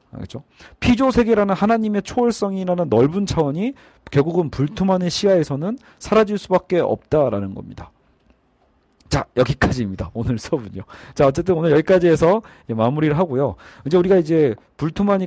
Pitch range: 120-180 Hz